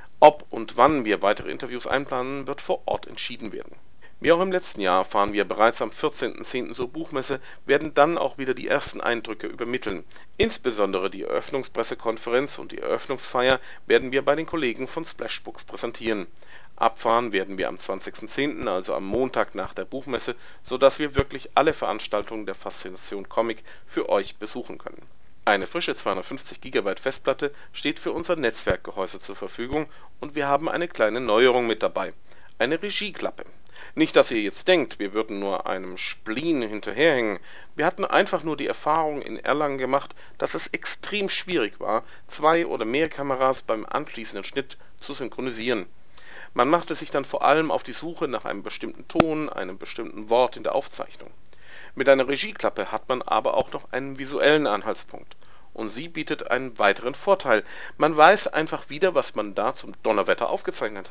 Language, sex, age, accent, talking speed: German, male, 40-59, German, 165 wpm